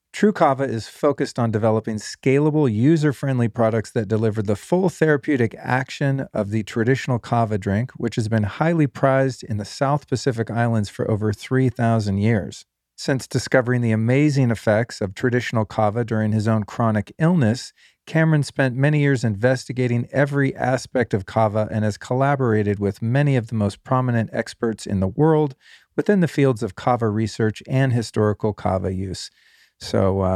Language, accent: English, American